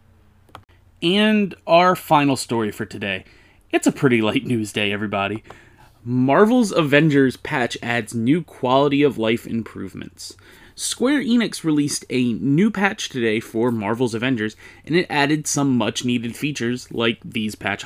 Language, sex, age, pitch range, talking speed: English, male, 30-49, 115-155 Hz, 140 wpm